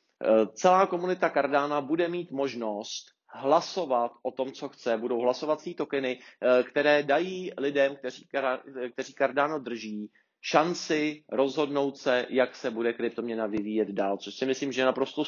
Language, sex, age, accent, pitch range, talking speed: Czech, male, 30-49, native, 120-145 Hz, 135 wpm